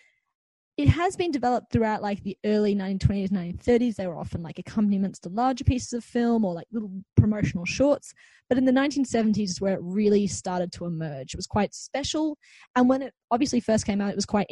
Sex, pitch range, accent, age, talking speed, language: female, 185-245 Hz, Australian, 20-39, 205 wpm, English